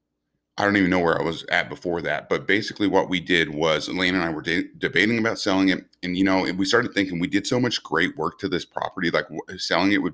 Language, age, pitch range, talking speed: English, 30-49, 85-105 Hz, 255 wpm